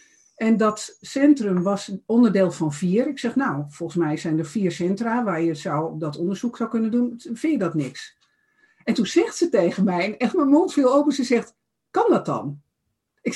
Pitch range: 190-275 Hz